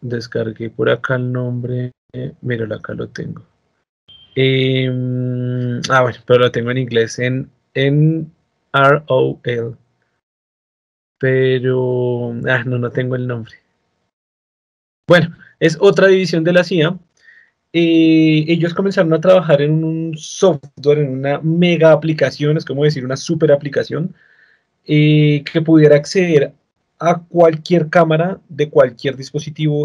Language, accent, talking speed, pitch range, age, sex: Spanish, Colombian, 125 wpm, 130-160 Hz, 30-49, male